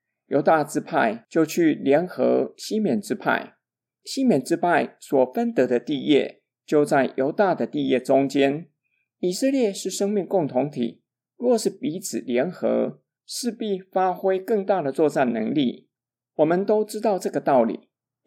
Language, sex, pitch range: Chinese, male, 140-225 Hz